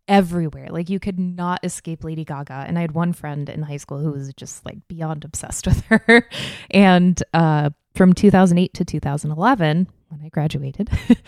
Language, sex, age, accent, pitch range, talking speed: English, female, 20-39, American, 150-180 Hz, 175 wpm